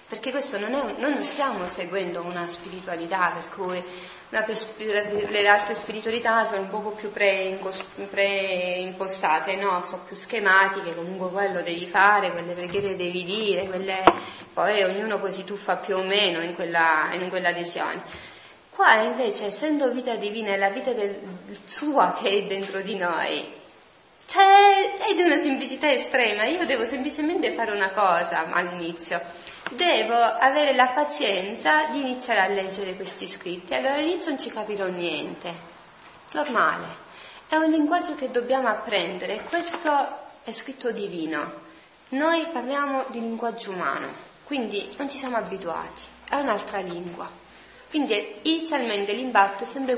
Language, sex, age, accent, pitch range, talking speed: Italian, female, 20-39, native, 185-255 Hz, 145 wpm